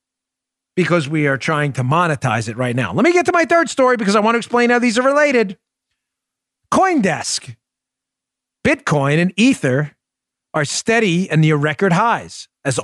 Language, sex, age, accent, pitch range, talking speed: English, male, 40-59, American, 145-225 Hz, 170 wpm